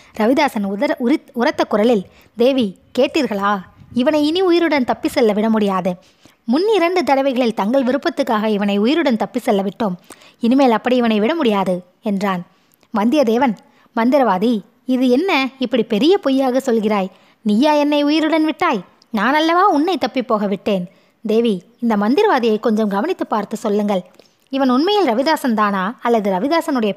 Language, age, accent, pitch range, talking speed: Tamil, 20-39, native, 205-275 Hz, 130 wpm